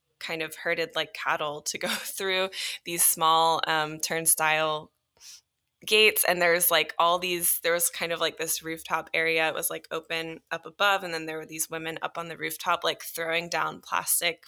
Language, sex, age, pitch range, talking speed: English, female, 10-29, 160-185 Hz, 190 wpm